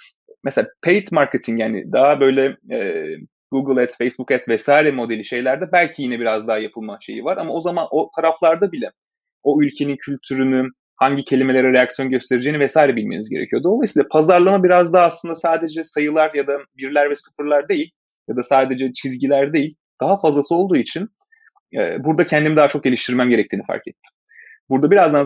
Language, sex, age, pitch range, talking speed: Turkish, male, 30-49, 125-160 Hz, 165 wpm